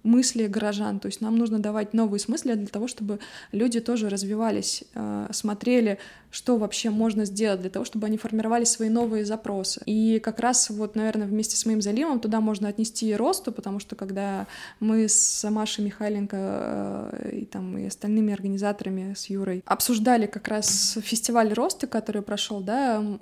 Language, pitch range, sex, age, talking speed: Russian, 205-230 Hz, female, 20-39, 165 wpm